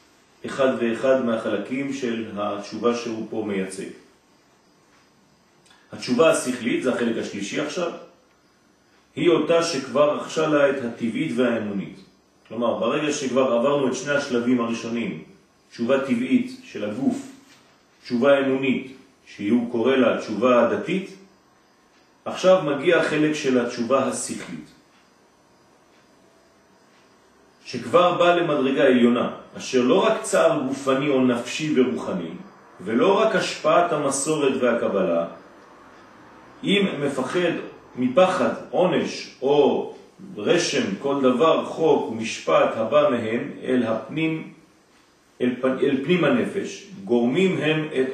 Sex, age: male, 40-59